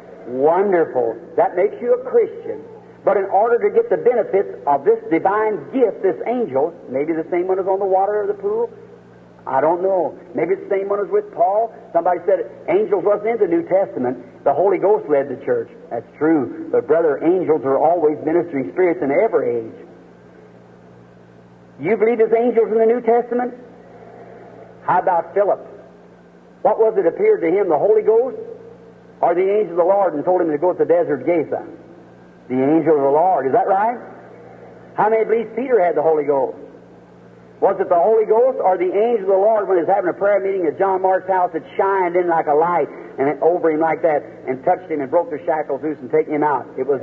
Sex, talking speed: male, 215 wpm